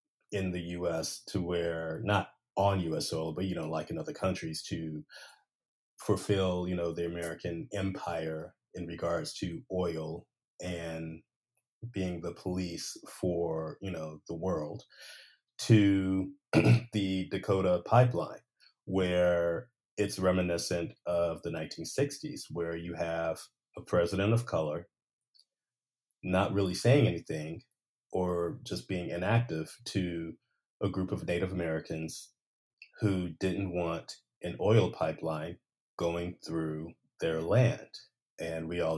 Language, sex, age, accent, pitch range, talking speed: English, male, 30-49, American, 85-100 Hz, 125 wpm